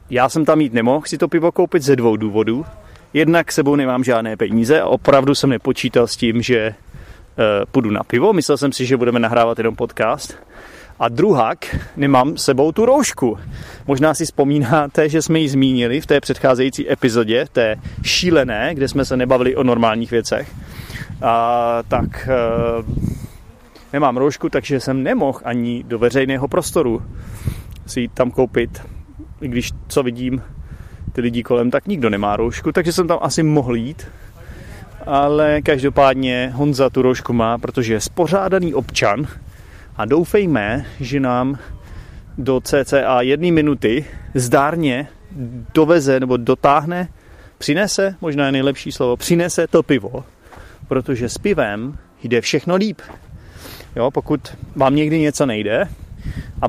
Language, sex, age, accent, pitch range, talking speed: Czech, male, 30-49, native, 120-145 Hz, 145 wpm